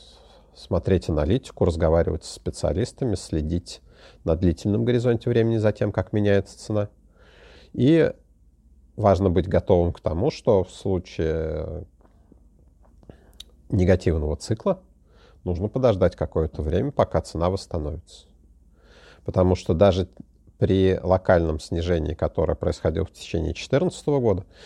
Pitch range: 80-105 Hz